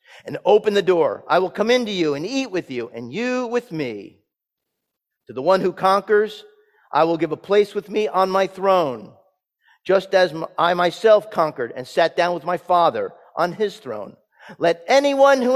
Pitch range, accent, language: 190-255 Hz, American, English